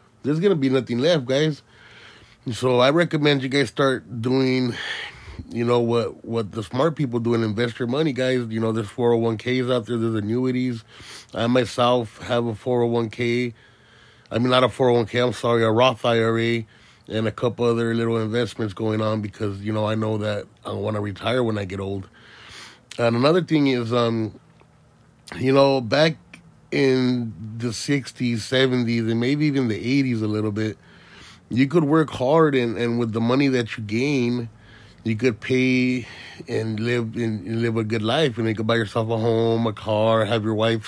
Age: 30-49